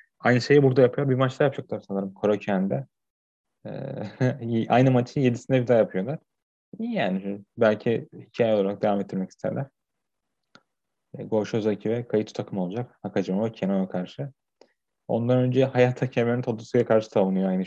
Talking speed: 145 wpm